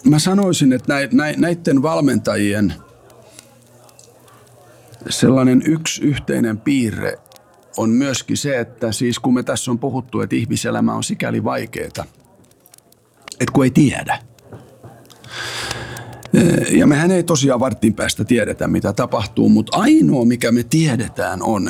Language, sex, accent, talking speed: Finnish, male, native, 120 wpm